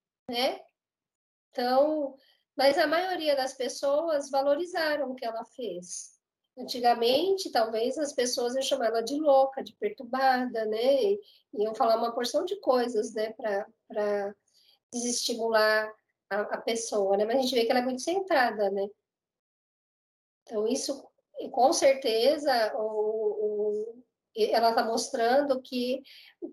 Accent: Brazilian